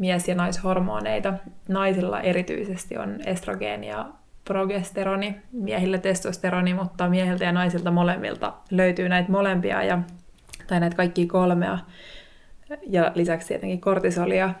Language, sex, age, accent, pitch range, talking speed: Finnish, female, 20-39, native, 175-190 Hz, 115 wpm